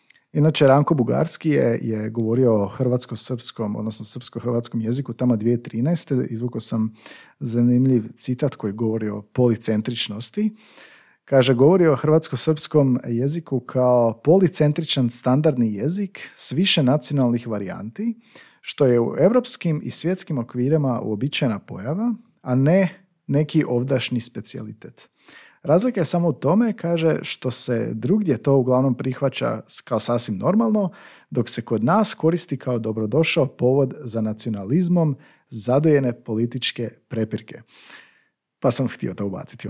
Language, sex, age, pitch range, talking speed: Croatian, male, 40-59, 115-160 Hz, 120 wpm